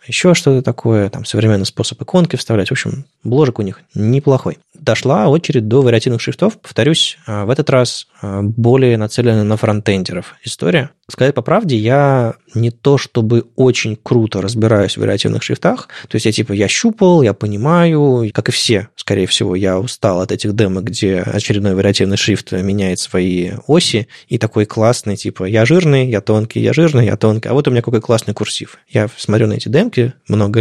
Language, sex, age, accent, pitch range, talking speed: Russian, male, 20-39, native, 105-135 Hz, 180 wpm